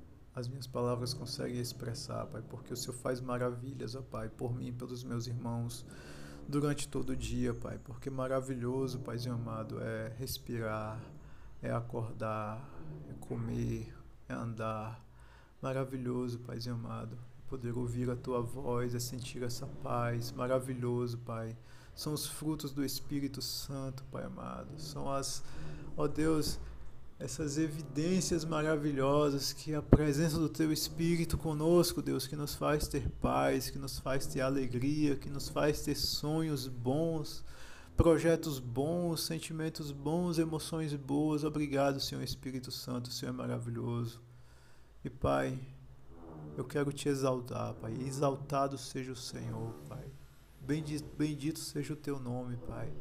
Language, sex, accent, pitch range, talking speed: Portuguese, male, Brazilian, 120-145 Hz, 135 wpm